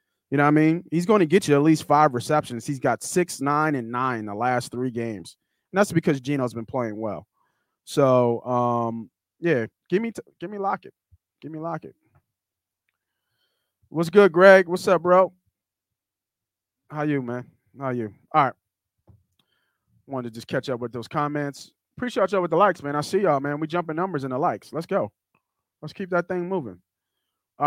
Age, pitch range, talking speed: 20-39, 125-165 Hz, 195 wpm